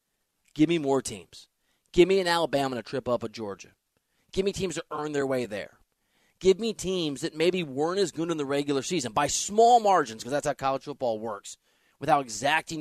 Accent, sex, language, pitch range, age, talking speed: American, male, English, 120-160 Hz, 30-49, 210 wpm